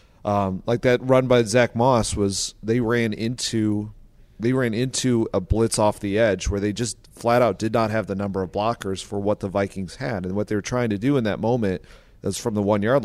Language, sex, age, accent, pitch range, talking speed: English, male, 30-49, American, 100-115 Hz, 235 wpm